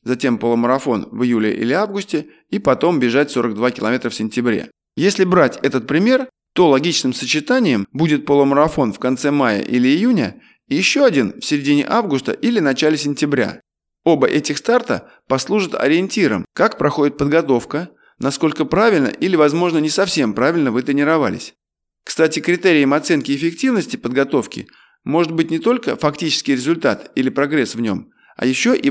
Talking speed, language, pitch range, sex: 145 wpm, Russian, 135-190 Hz, male